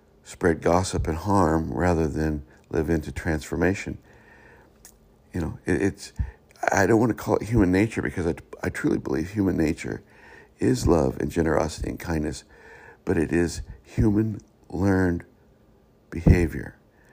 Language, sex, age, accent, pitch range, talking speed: English, male, 60-79, American, 75-90 Hz, 135 wpm